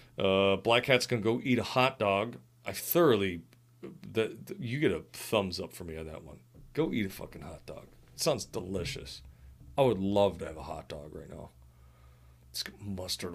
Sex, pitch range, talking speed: male, 90-120 Hz, 205 wpm